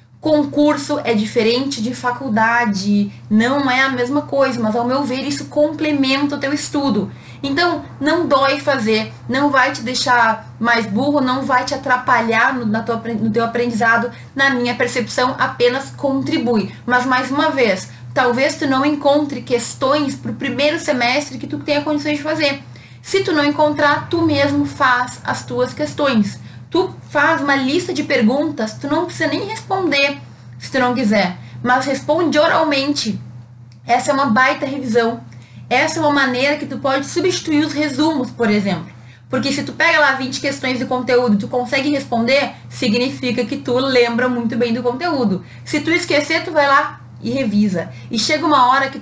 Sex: female